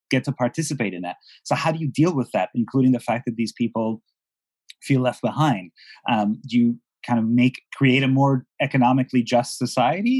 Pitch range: 115-140 Hz